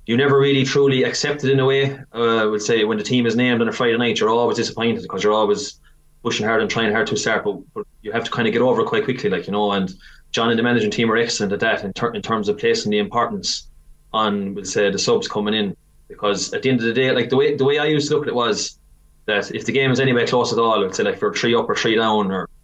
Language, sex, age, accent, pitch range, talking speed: English, male, 20-39, Irish, 105-125 Hz, 300 wpm